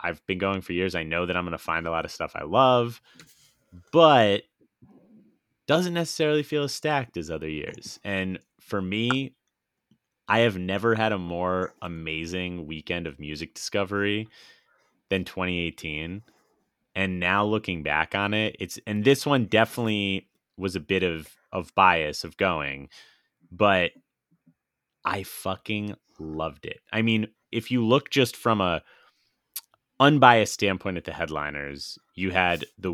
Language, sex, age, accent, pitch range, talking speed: English, male, 30-49, American, 80-110 Hz, 150 wpm